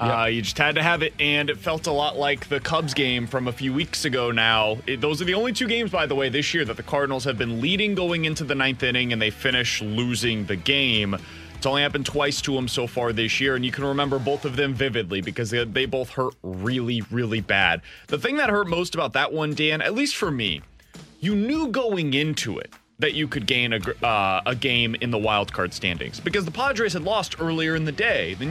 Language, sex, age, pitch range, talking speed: English, male, 30-49, 125-170 Hz, 245 wpm